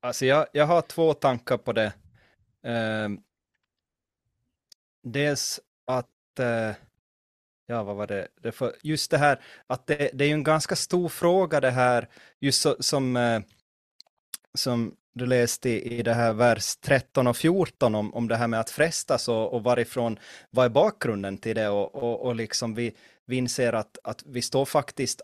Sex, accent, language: male, native, Swedish